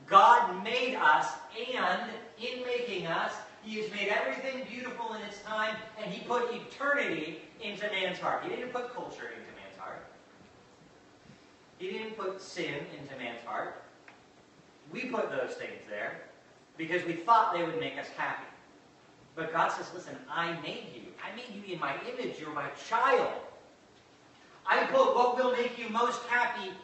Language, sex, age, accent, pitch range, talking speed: English, male, 40-59, American, 185-245 Hz, 165 wpm